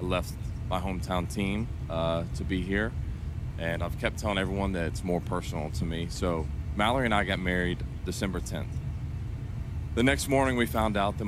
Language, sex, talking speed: English, male, 180 wpm